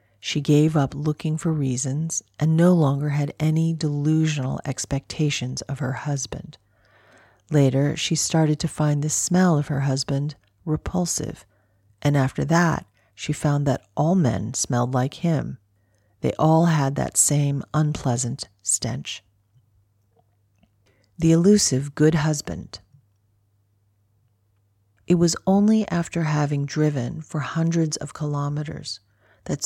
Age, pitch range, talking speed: 40-59, 120-155 Hz, 120 wpm